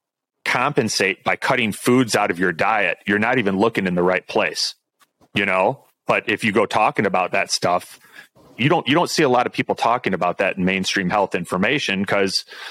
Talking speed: 205 wpm